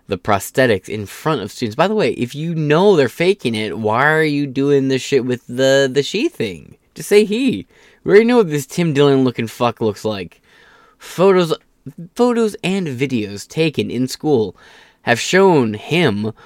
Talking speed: 180 wpm